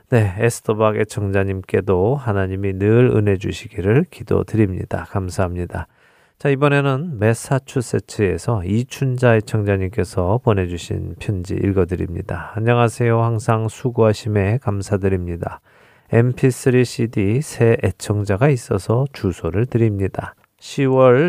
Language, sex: Korean, male